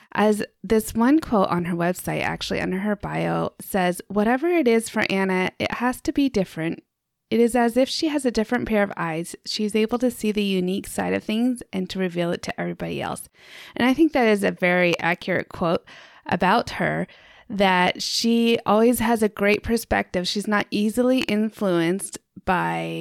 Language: English